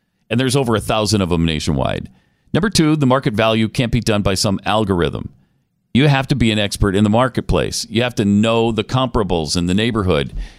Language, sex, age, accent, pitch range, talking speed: English, male, 40-59, American, 105-150 Hz, 210 wpm